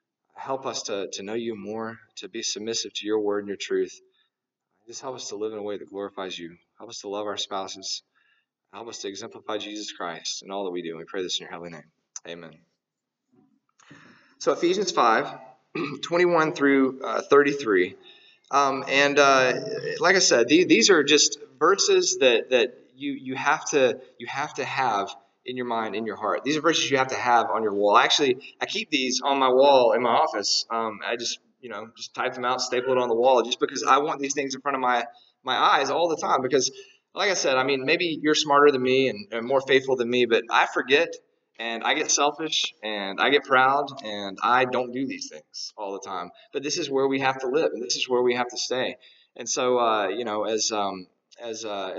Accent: American